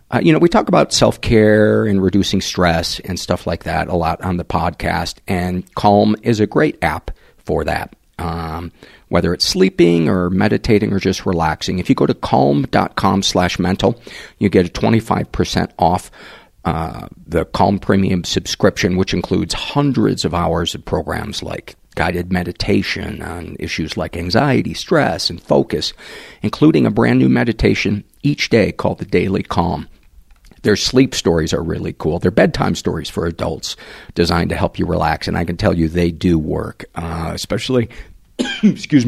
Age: 50-69